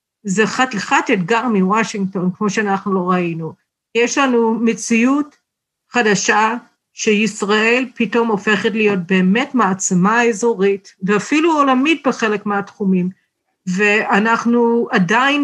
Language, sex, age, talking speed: Hebrew, female, 50-69, 100 wpm